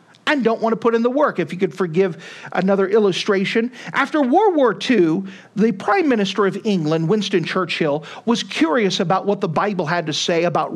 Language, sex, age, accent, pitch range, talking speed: English, male, 40-59, American, 180-235 Hz, 195 wpm